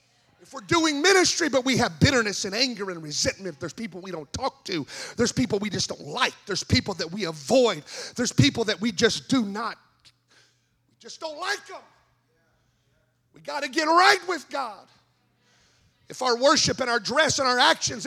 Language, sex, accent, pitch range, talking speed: English, male, American, 235-330 Hz, 190 wpm